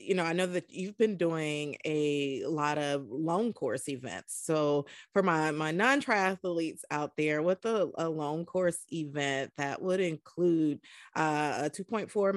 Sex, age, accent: female, 30-49, American